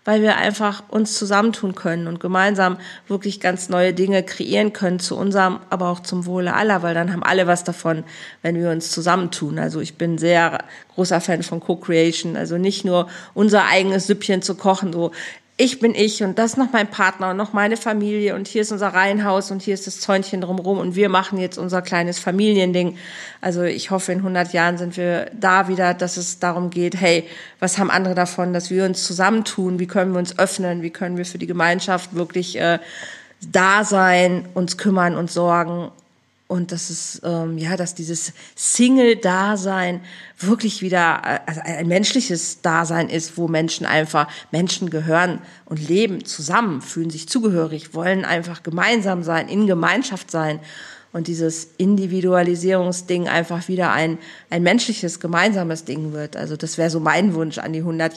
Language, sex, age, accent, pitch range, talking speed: German, female, 40-59, German, 170-200 Hz, 180 wpm